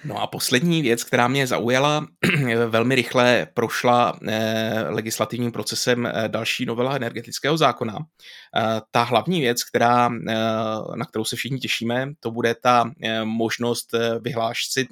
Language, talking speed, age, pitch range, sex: Czech, 120 wpm, 20-39, 110-125 Hz, male